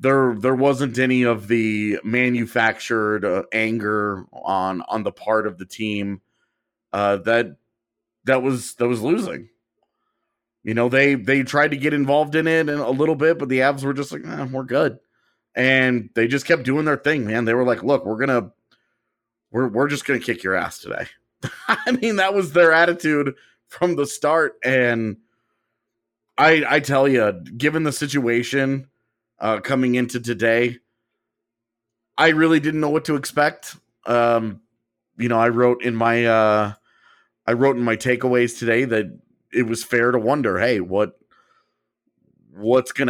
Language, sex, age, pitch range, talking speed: English, male, 30-49, 115-140 Hz, 165 wpm